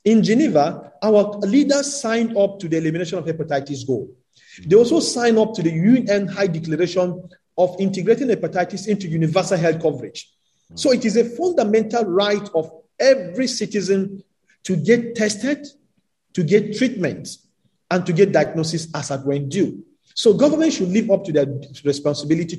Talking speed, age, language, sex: 155 wpm, 50-69, English, male